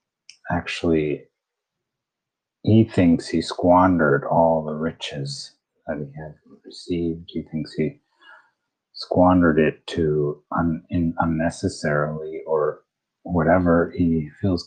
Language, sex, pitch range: English, male, 80-90 Hz